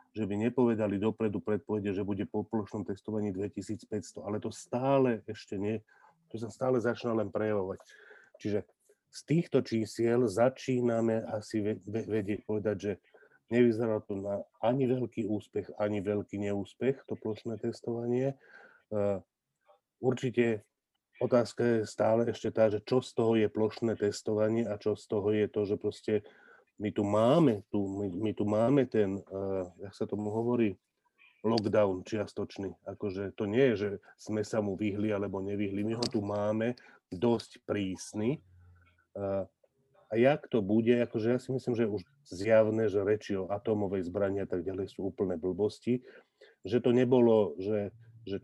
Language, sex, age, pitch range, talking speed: Slovak, male, 40-59, 100-115 Hz, 155 wpm